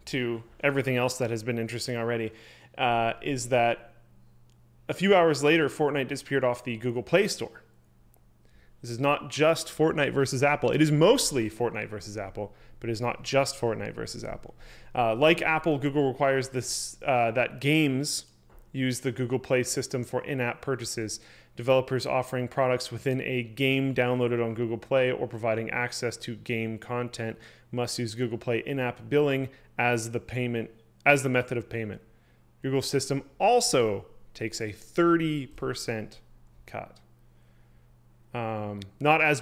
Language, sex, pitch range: English, male, 115-135 Hz